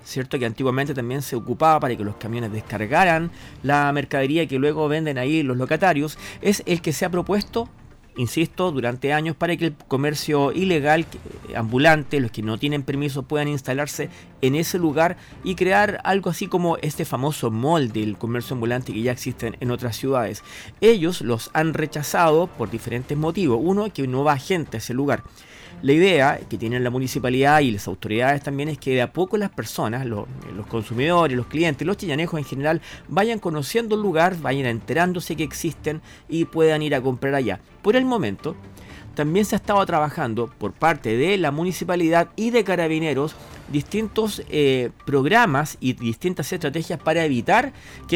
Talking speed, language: 175 wpm, Spanish